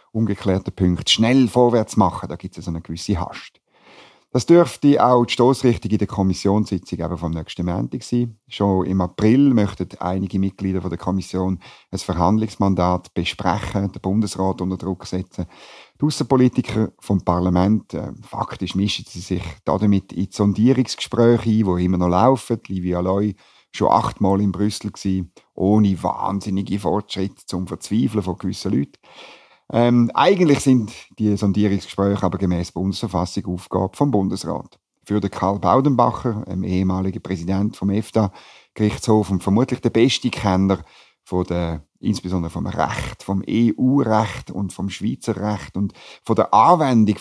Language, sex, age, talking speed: German, male, 50-69, 145 wpm